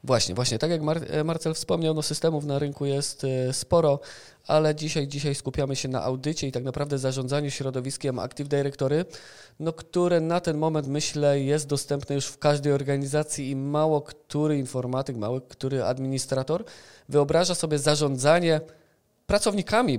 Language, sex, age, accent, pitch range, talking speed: Polish, male, 20-39, native, 130-150 Hz, 145 wpm